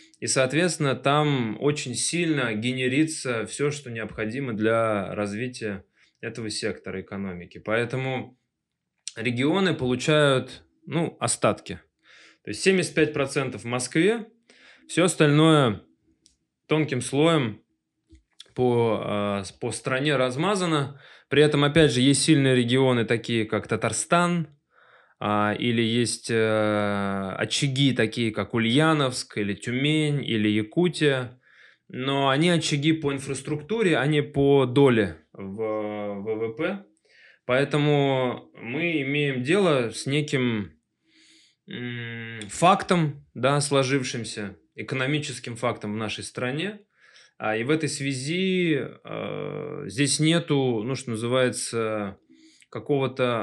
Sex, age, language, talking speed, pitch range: male, 20-39, Russian, 95 wpm, 110-150 Hz